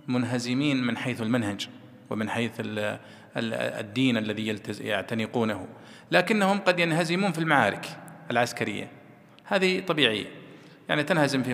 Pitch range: 120-155 Hz